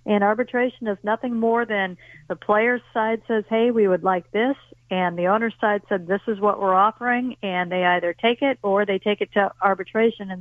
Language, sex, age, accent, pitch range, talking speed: English, female, 50-69, American, 190-230 Hz, 215 wpm